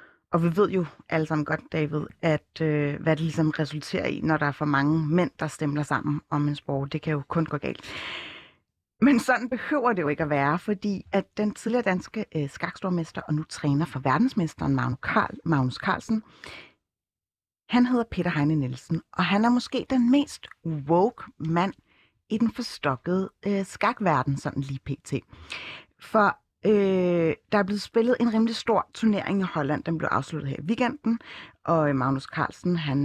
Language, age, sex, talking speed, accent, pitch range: Danish, 30-49, female, 180 wpm, native, 150-210 Hz